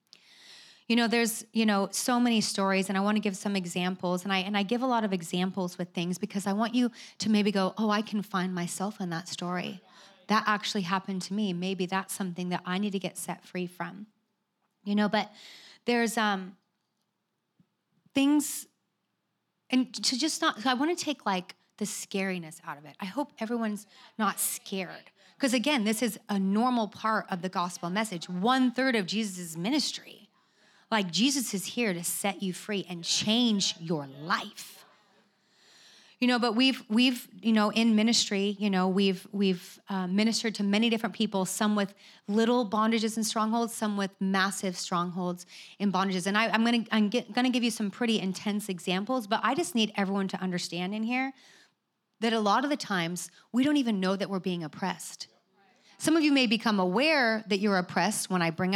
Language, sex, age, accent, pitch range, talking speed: English, female, 30-49, American, 190-225 Hz, 190 wpm